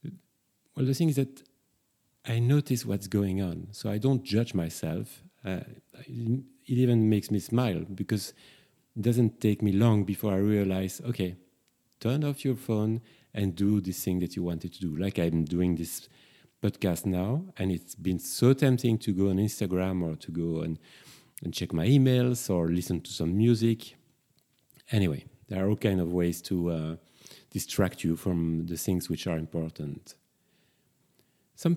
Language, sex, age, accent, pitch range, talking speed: English, male, 40-59, French, 95-125 Hz, 170 wpm